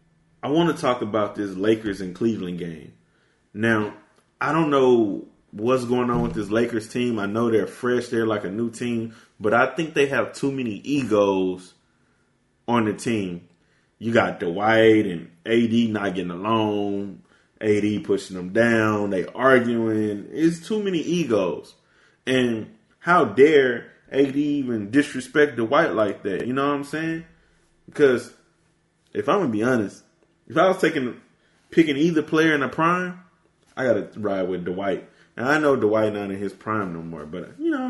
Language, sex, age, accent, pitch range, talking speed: English, male, 20-39, American, 105-145 Hz, 175 wpm